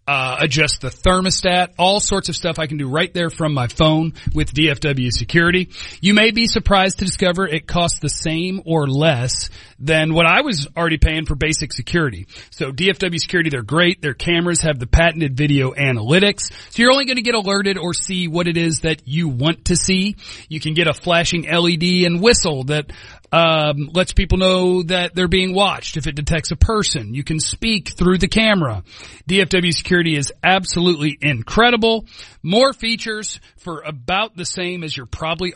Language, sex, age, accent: English, male, 40-59, American